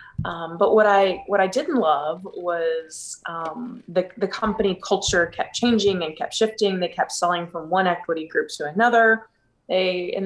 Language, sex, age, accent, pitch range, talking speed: English, female, 20-39, American, 170-215 Hz, 175 wpm